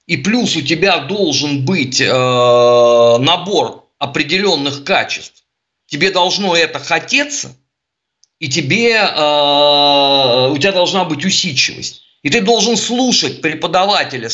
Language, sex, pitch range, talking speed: Russian, male, 145-215 Hz, 115 wpm